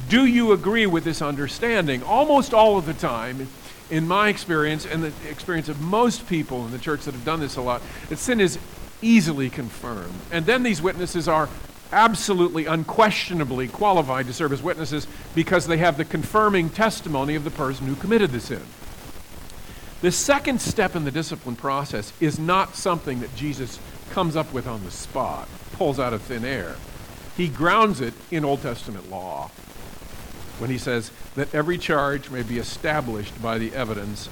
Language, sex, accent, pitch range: English, male, American, 130-180 Hz